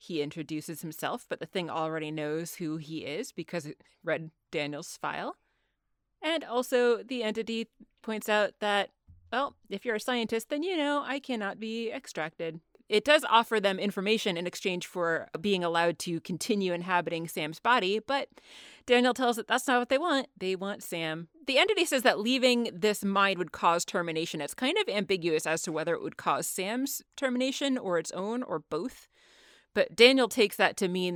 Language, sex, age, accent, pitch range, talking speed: English, female, 30-49, American, 165-230 Hz, 185 wpm